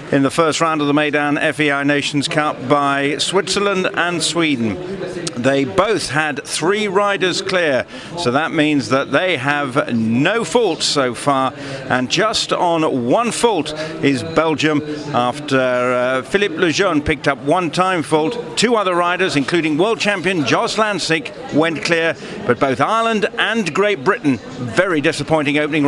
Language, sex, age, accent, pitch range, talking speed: English, male, 50-69, British, 135-180 Hz, 150 wpm